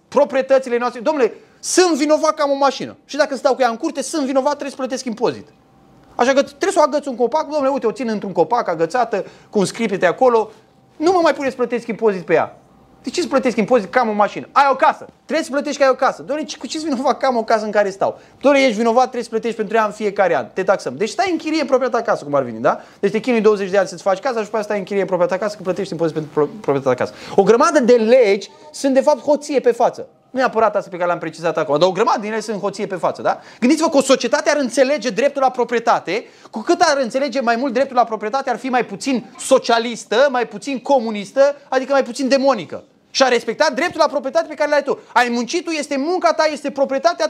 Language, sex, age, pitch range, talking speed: Romanian, male, 20-39, 225-300 Hz, 250 wpm